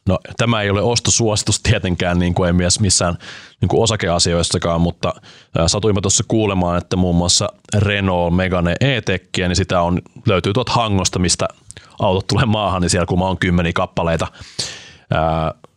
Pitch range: 85-105 Hz